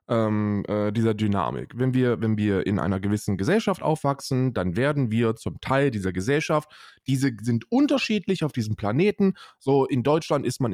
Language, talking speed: German, 155 wpm